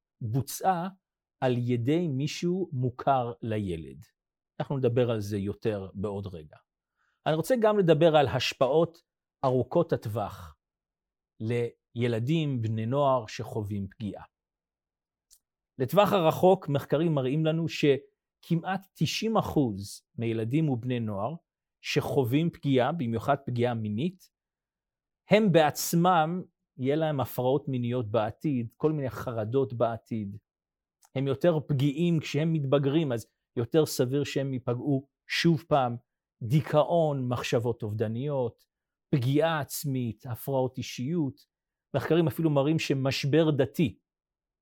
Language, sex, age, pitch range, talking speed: Hebrew, male, 40-59, 115-155 Hz, 100 wpm